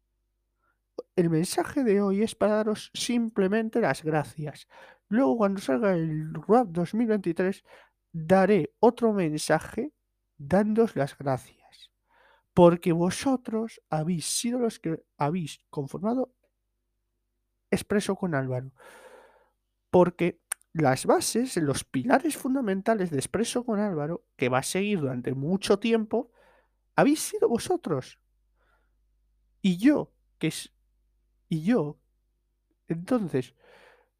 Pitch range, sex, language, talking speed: 145-225 Hz, male, Spanish, 105 wpm